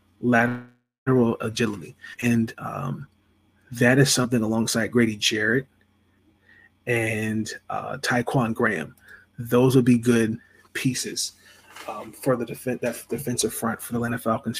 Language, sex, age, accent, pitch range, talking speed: English, male, 30-49, American, 110-125 Hz, 125 wpm